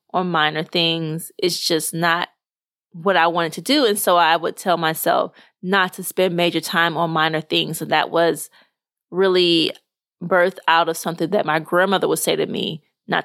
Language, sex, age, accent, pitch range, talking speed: English, female, 20-39, American, 175-255 Hz, 185 wpm